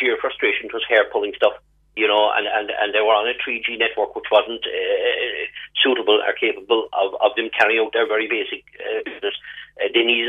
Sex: male